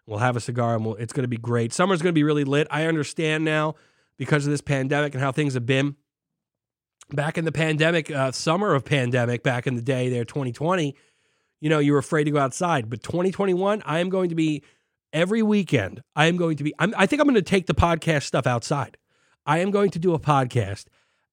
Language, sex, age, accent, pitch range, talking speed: English, male, 30-49, American, 130-170 Hz, 235 wpm